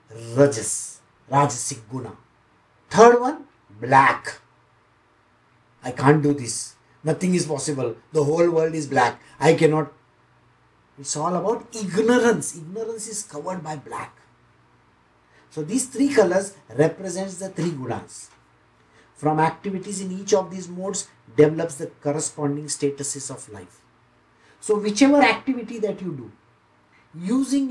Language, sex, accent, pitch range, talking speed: English, male, Indian, 115-185 Hz, 125 wpm